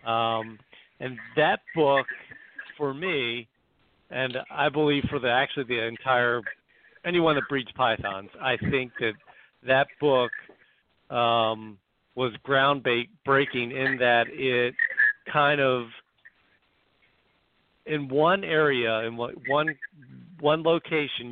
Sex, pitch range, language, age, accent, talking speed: male, 115-140 Hz, English, 50-69, American, 105 wpm